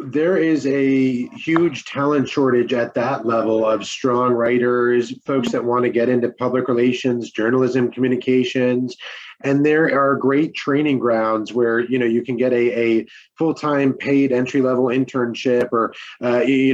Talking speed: 160 wpm